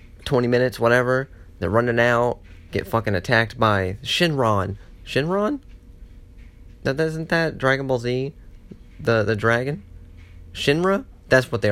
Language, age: English, 30-49